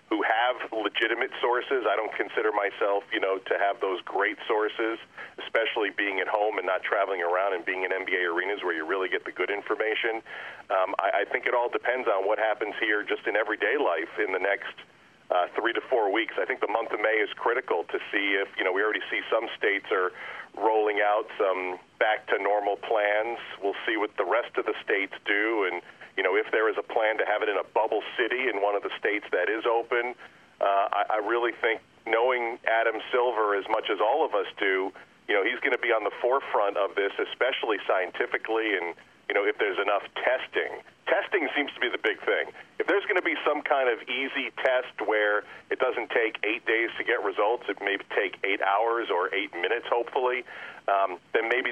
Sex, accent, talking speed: male, American, 220 wpm